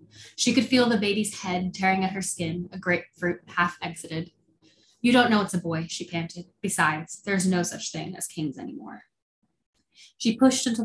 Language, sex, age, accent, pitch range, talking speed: English, female, 10-29, American, 170-195 Hz, 175 wpm